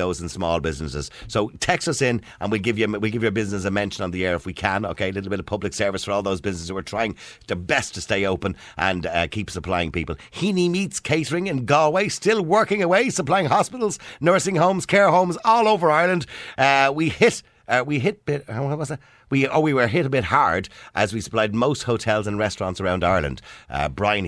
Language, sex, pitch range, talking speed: English, male, 90-130 Hz, 230 wpm